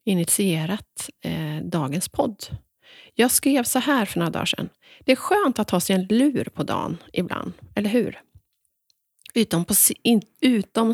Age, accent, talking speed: 30-49, native, 160 wpm